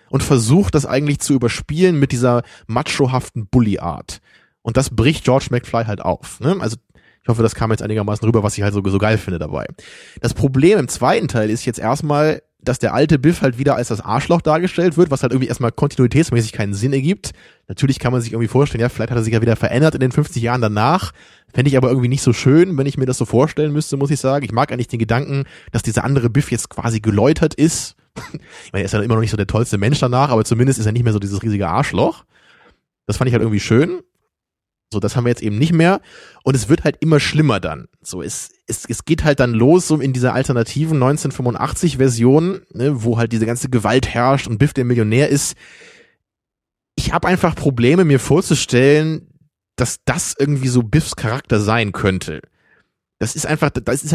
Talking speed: 220 wpm